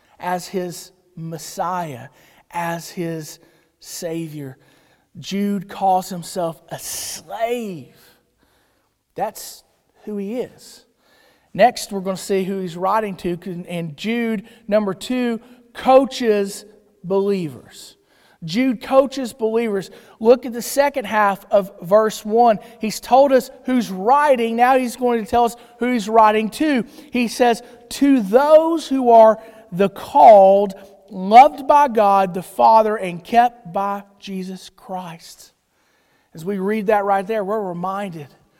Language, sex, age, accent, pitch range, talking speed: English, male, 40-59, American, 190-255 Hz, 125 wpm